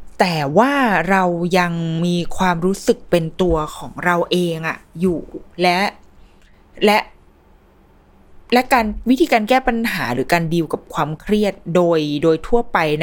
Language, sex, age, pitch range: Thai, female, 20-39, 165-235 Hz